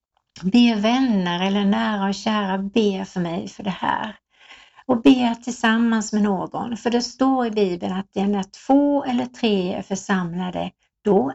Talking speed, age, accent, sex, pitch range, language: 160 wpm, 60-79, native, female, 190-245 Hz, Swedish